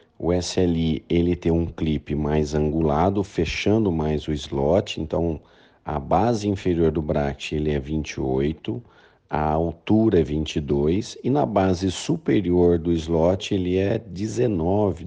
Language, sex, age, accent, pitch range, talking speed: Portuguese, male, 50-69, Brazilian, 80-100 Hz, 135 wpm